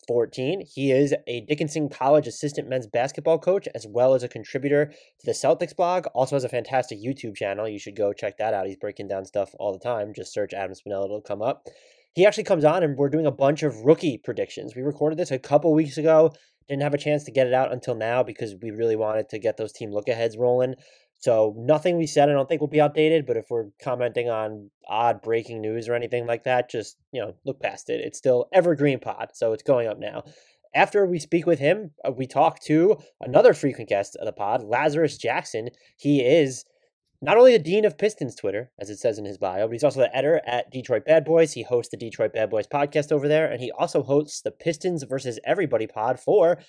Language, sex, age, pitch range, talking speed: English, male, 20-39, 120-165 Hz, 235 wpm